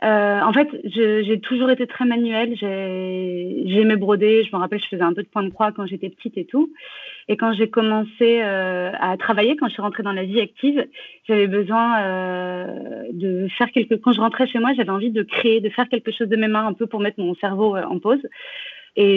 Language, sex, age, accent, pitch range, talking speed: French, female, 30-49, French, 195-235 Hz, 235 wpm